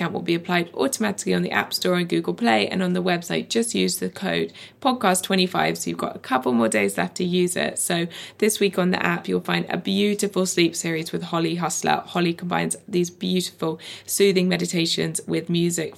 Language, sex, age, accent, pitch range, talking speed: English, female, 20-39, British, 145-185 Hz, 205 wpm